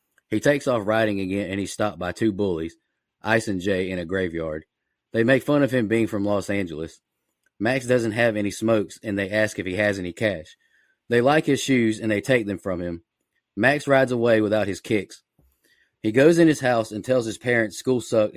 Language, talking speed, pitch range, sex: English, 215 wpm, 100-120 Hz, male